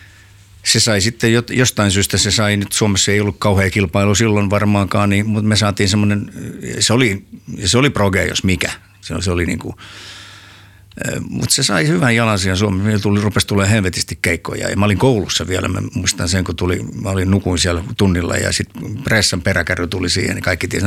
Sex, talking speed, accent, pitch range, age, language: male, 200 wpm, native, 90-110 Hz, 50-69, Finnish